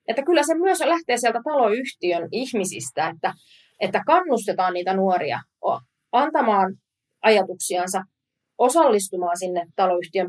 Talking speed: 105 wpm